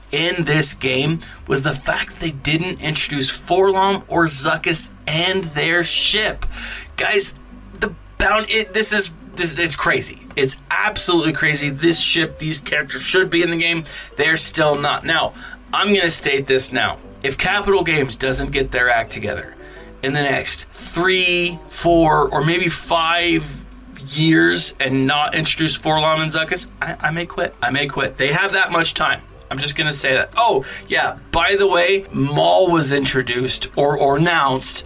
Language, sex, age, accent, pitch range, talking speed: English, male, 20-39, American, 135-170 Hz, 165 wpm